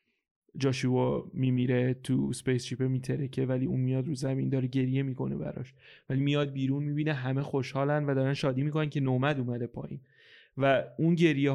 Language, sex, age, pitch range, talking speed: Persian, male, 30-49, 130-160 Hz, 165 wpm